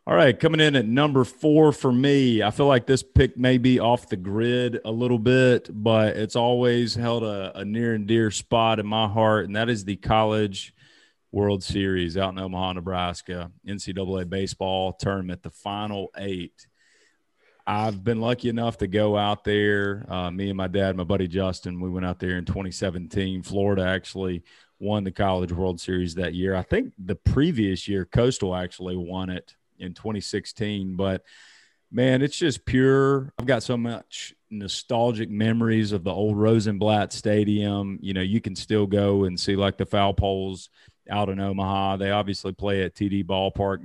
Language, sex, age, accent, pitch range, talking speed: English, male, 30-49, American, 95-115 Hz, 180 wpm